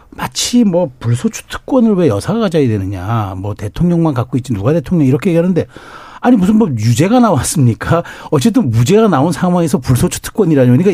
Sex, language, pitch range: male, Korean, 130-205 Hz